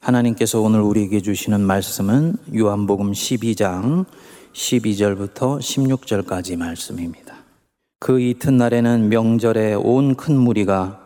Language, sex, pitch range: Korean, male, 100-125 Hz